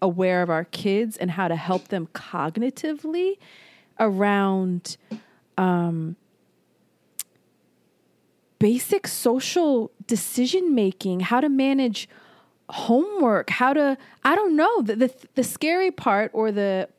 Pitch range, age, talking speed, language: 175-225 Hz, 20-39, 110 wpm, English